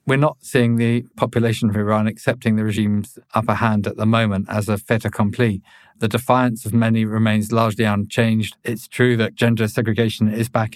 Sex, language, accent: male, English, British